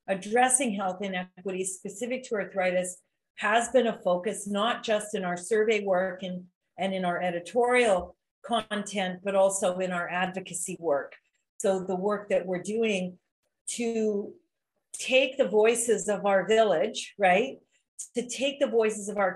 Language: English